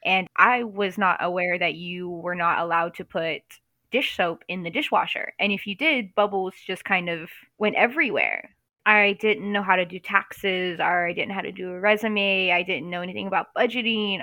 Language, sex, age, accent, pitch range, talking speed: English, female, 10-29, American, 175-200 Hz, 205 wpm